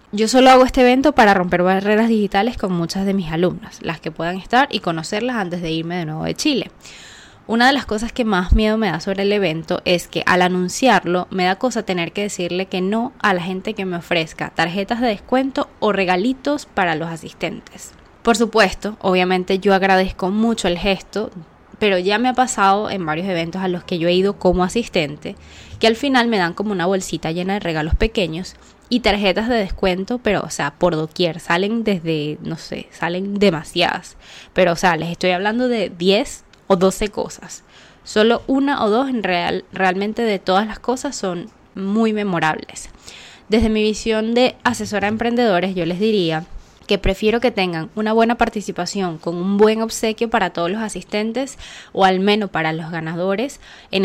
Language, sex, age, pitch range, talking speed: Spanish, female, 10-29, 175-225 Hz, 190 wpm